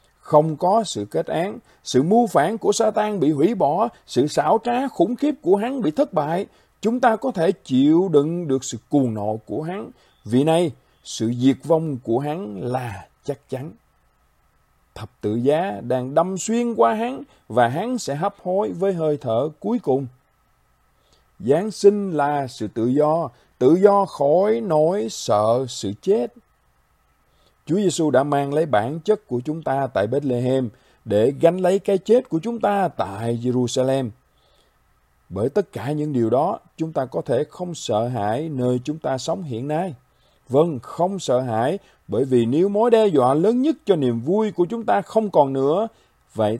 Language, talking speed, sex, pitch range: Vietnamese, 180 wpm, male, 125-205 Hz